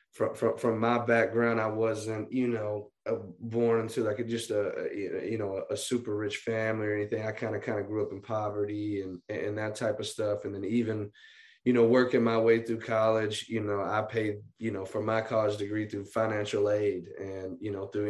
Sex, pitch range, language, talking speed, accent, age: male, 105-115 Hz, English, 220 wpm, American, 20-39